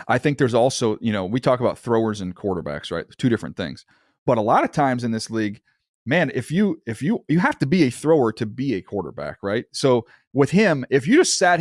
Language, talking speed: English, 245 wpm